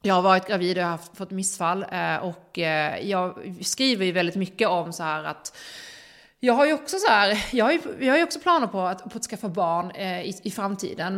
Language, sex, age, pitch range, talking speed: Swedish, female, 30-49, 180-230 Hz, 165 wpm